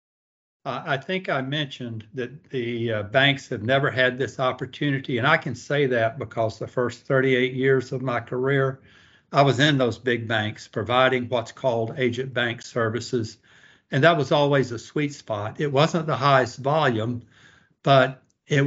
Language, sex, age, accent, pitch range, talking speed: English, male, 60-79, American, 120-140 Hz, 165 wpm